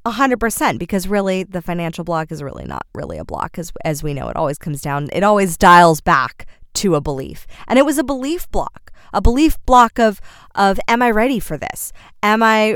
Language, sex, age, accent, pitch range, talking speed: English, female, 20-39, American, 170-230 Hz, 210 wpm